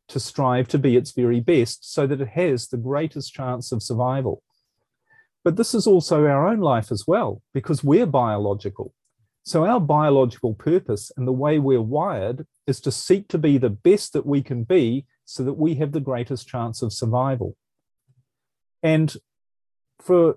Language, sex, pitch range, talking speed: English, male, 125-165 Hz, 175 wpm